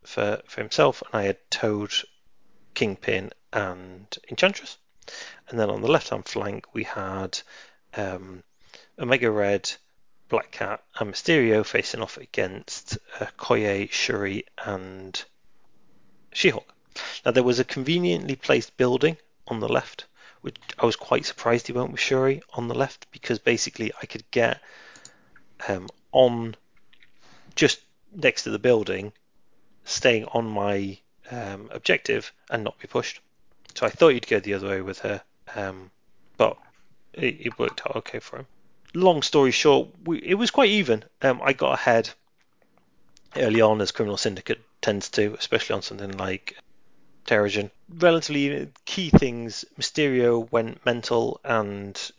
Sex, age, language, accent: male, 30-49, English, British